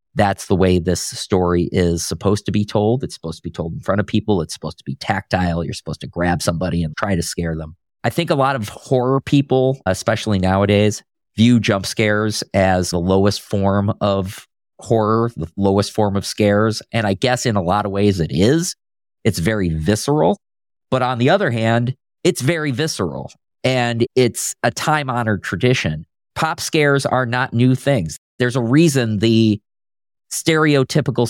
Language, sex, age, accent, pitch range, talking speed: English, male, 40-59, American, 95-130 Hz, 180 wpm